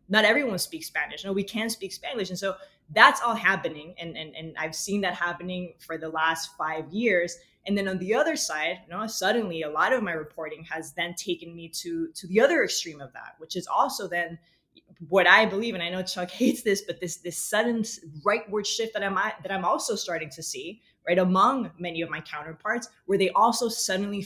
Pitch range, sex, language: 170-200 Hz, female, English